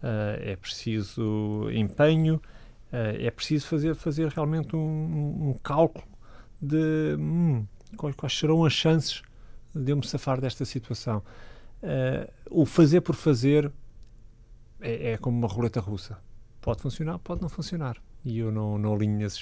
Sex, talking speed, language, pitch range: male, 150 wpm, Portuguese, 115-150 Hz